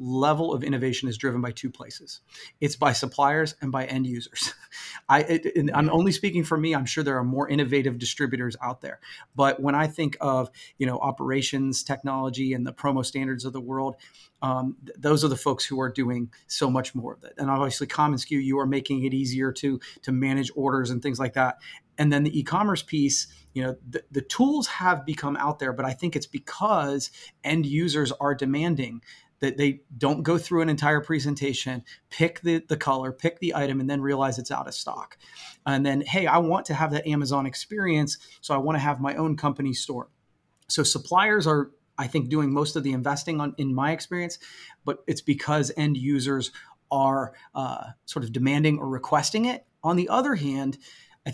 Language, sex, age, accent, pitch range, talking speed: English, male, 30-49, American, 135-155 Hz, 205 wpm